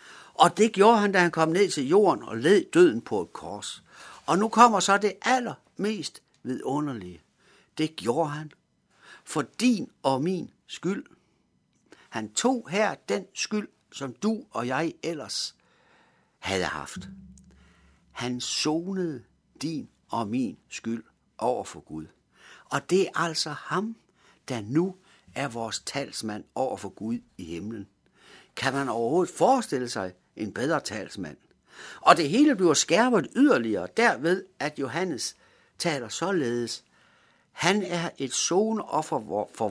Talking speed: 140 wpm